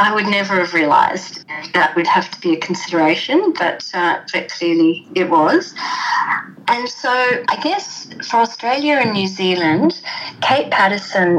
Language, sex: English, female